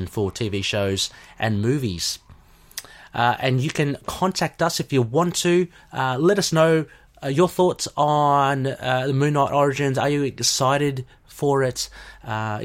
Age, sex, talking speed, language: 30-49, male, 160 wpm, English